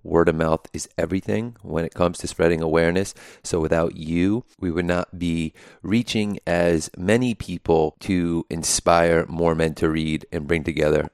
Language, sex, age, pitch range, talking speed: English, male, 30-49, 80-90 Hz, 165 wpm